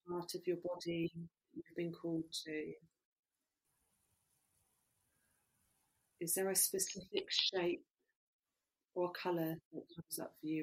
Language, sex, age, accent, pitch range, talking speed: English, female, 40-59, British, 140-180 Hz, 115 wpm